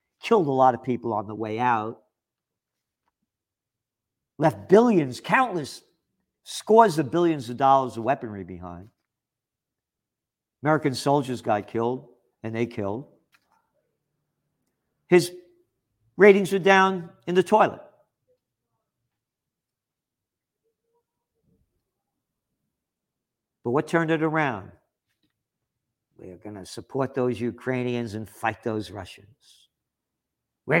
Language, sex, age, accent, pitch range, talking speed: English, male, 50-69, American, 115-155 Hz, 100 wpm